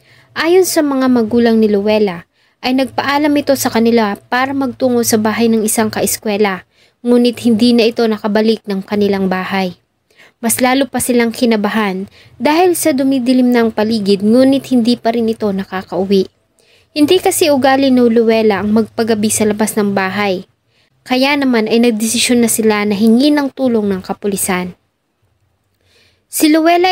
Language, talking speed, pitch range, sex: English, 150 wpm, 205-255 Hz, female